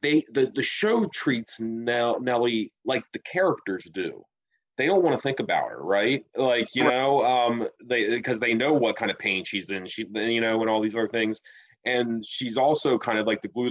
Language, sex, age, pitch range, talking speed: English, male, 30-49, 105-120 Hz, 210 wpm